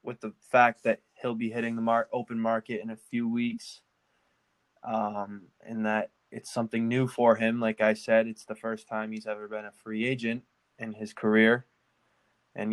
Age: 20-39